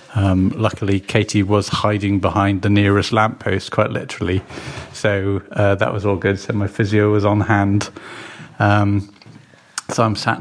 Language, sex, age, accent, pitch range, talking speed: English, male, 30-49, British, 100-115 Hz, 155 wpm